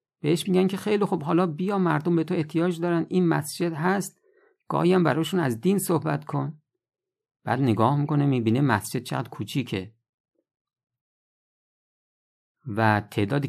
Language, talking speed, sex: Persian, 140 wpm, male